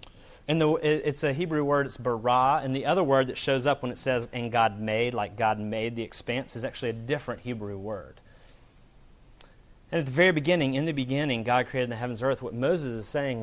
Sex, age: male, 30-49